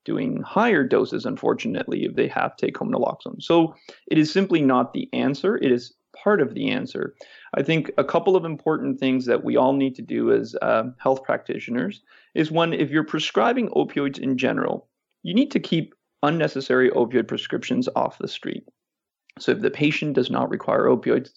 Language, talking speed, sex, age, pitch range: English, 185 wpm, male, 30-49, 135-180 Hz